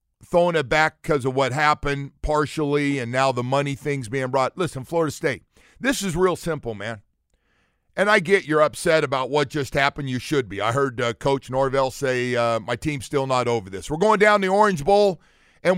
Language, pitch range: English, 140-190 Hz